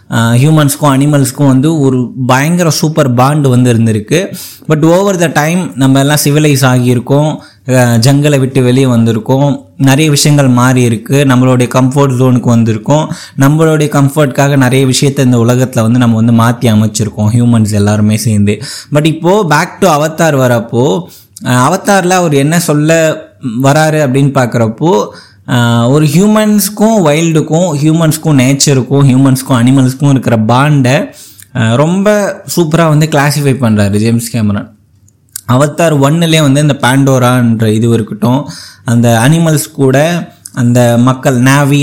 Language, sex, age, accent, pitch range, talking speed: Tamil, male, 20-39, native, 120-150 Hz, 120 wpm